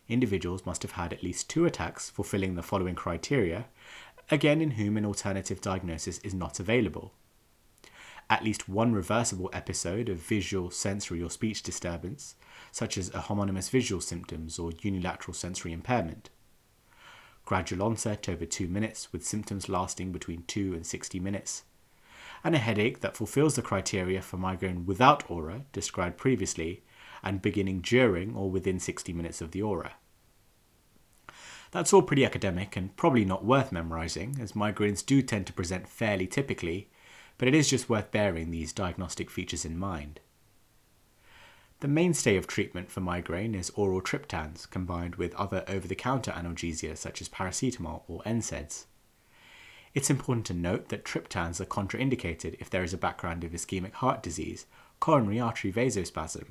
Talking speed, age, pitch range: 155 wpm, 30-49, 90-110 Hz